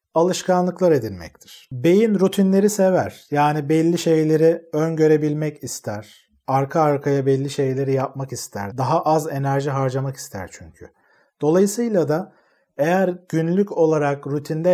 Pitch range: 140-170 Hz